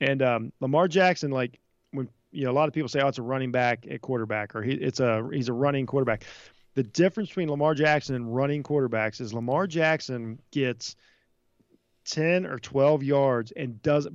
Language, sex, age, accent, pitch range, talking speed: English, male, 40-59, American, 125-155 Hz, 195 wpm